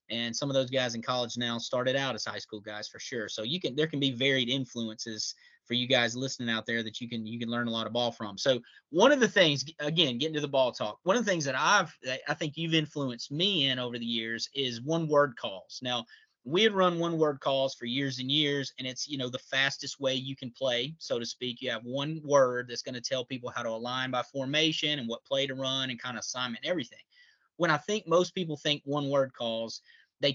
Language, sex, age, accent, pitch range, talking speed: English, male, 30-49, American, 125-150 Hz, 255 wpm